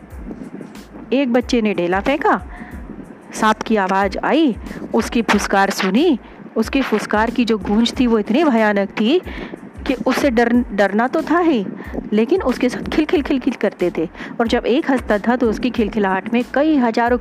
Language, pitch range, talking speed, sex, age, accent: Hindi, 205-255 Hz, 145 wpm, female, 40-59, native